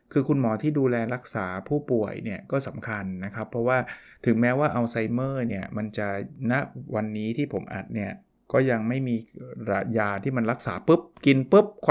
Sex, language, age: male, Thai, 20-39